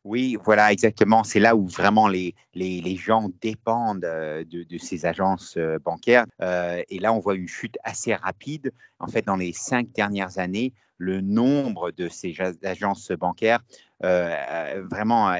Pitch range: 90-115 Hz